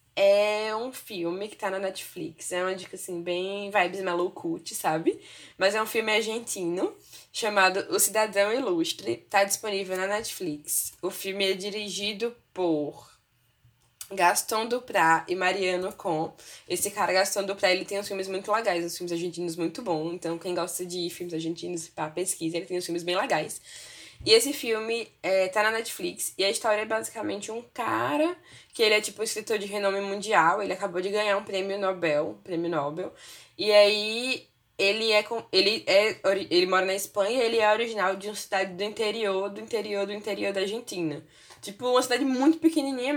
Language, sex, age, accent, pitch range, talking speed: Portuguese, female, 10-29, Brazilian, 180-220 Hz, 180 wpm